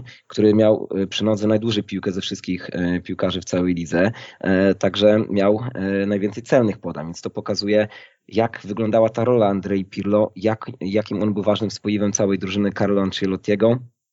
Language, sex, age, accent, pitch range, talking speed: Polish, male, 20-39, native, 95-105 Hz, 150 wpm